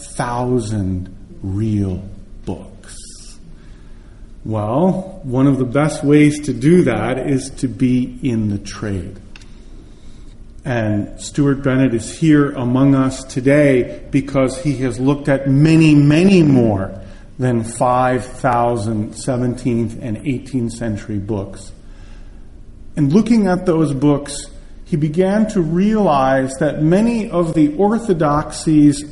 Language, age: English, 40-59